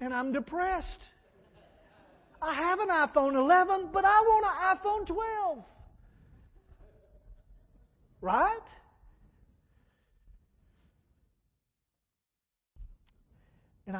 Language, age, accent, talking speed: English, 50-69, American, 70 wpm